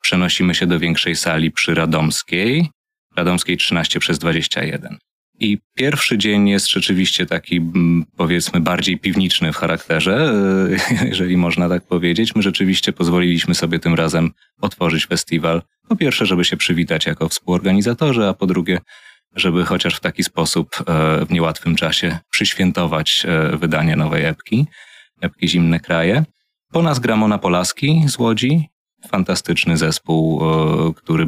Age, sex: 30-49, male